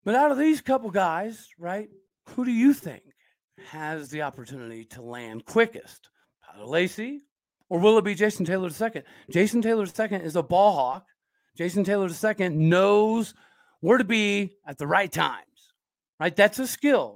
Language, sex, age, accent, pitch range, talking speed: English, male, 40-59, American, 165-215 Hz, 170 wpm